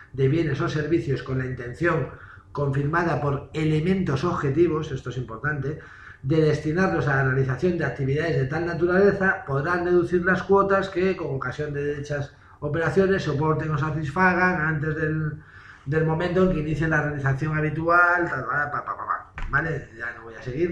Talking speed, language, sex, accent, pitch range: 170 wpm, Spanish, male, Spanish, 130-165 Hz